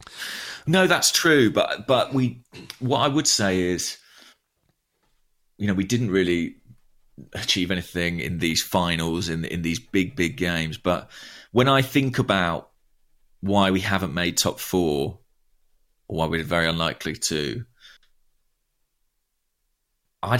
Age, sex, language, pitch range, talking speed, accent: 30-49, male, English, 85-110 Hz, 130 wpm, British